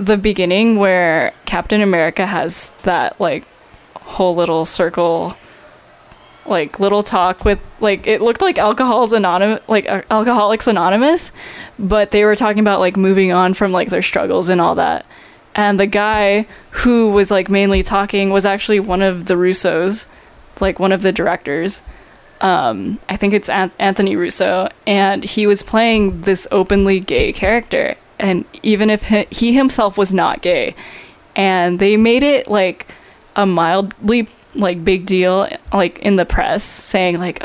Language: English